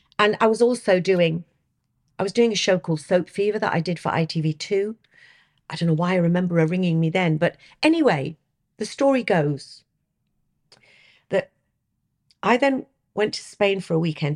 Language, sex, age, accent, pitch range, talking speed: English, female, 50-69, British, 145-175 Hz, 175 wpm